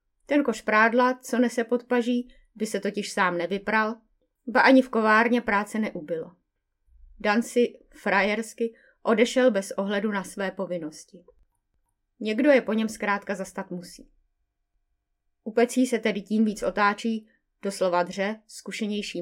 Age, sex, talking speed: 20-39, female, 135 wpm